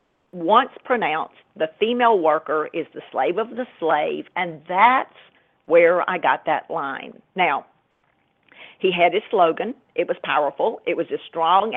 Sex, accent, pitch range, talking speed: female, American, 165-240 Hz, 155 wpm